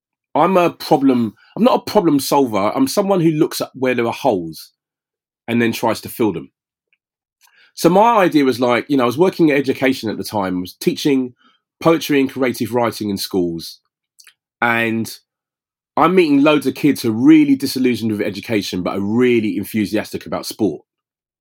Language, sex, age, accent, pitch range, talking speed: English, male, 30-49, British, 105-145 Hz, 180 wpm